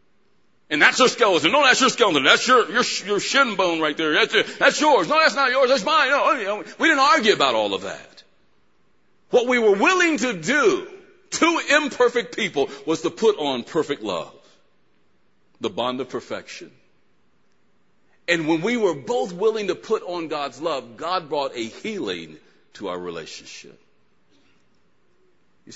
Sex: male